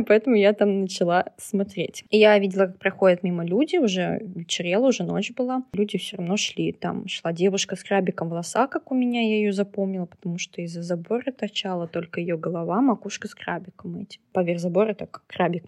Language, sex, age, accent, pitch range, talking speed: Russian, female, 20-39, native, 175-215 Hz, 190 wpm